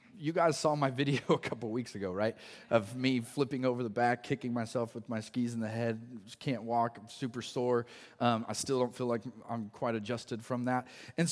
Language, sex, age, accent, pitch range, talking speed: English, male, 30-49, American, 125-185 Hz, 225 wpm